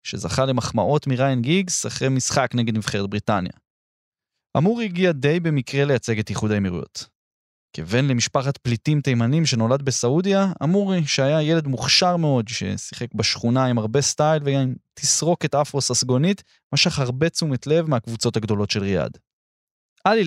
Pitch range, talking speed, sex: 115-155 Hz, 135 wpm, male